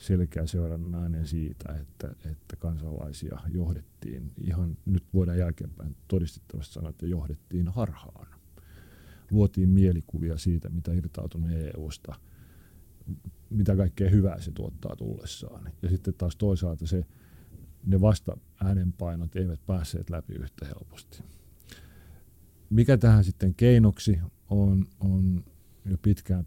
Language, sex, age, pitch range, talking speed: Finnish, male, 40-59, 80-95 Hz, 115 wpm